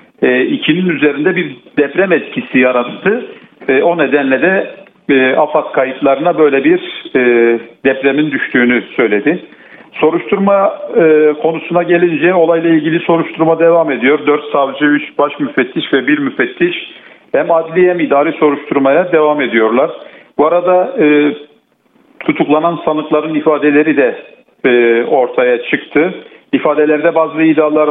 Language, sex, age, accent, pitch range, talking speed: Turkish, male, 50-69, native, 145-175 Hz, 125 wpm